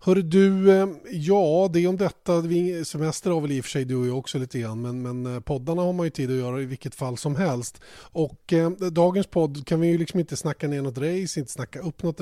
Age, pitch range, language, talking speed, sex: 20-39, 130-160 Hz, Swedish, 225 wpm, male